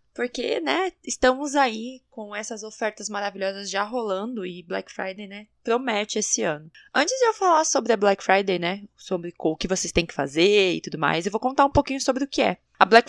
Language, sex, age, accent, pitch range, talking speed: Portuguese, female, 20-39, Brazilian, 200-255 Hz, 215 wpm